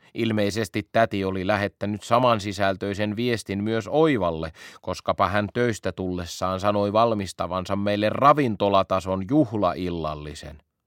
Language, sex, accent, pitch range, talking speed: Finnish, male, native, 95-125 Hz, 95 wpm